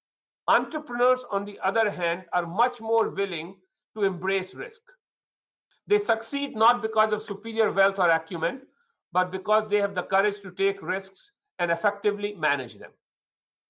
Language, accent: English, Indian